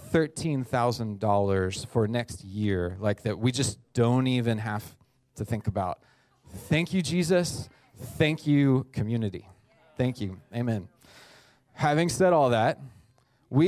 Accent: American